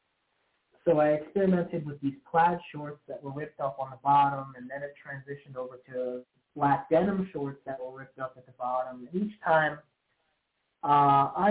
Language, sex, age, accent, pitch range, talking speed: English, male, 30-49, American, 130-160 Hz, 175 wpm